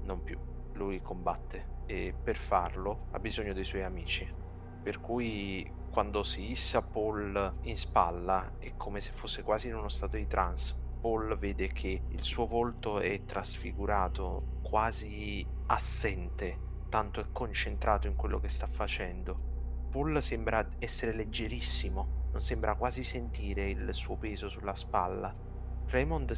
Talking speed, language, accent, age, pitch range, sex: 140 wpm, Italian, native, 30-49, 65-105 Hz, male